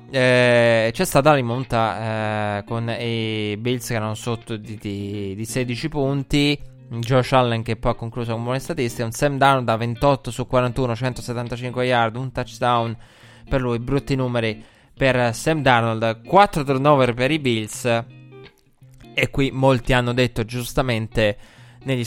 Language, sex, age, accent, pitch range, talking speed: Italian, male, 20-39, native, 110-130 Hz, 150 wpm